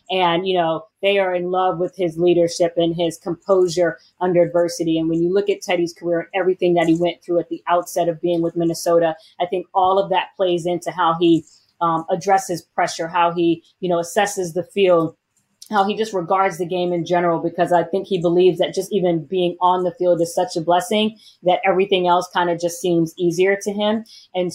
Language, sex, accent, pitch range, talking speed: English, female, American, 170-180 Hz, 220 wpm